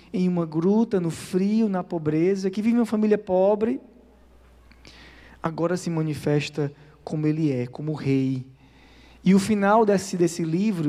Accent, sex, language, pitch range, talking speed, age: Brazilian, male, Portuguese, 150-210 Hz, 145 wpm, 20-39